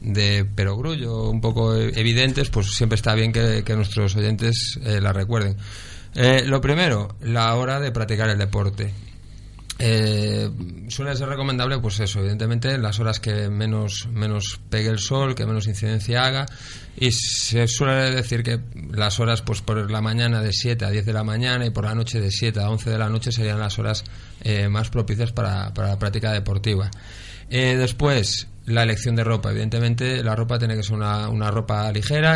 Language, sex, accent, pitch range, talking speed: Spanish, male, Spanish, 105-120 Hz, 185 wpm